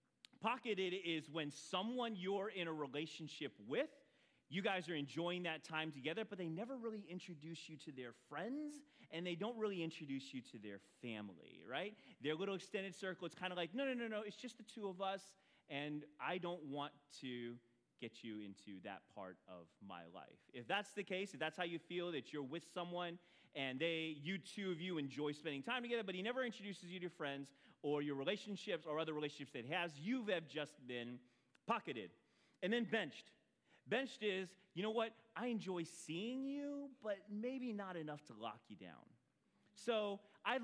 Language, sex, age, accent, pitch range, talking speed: English, male, 30-49, American, 135-200 Hz, 195 wpm